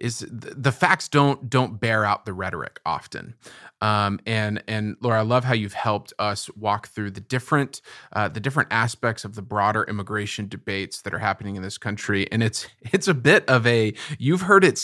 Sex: male